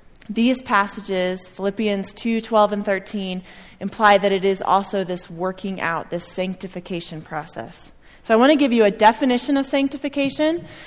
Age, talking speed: 30-49, 155 wpm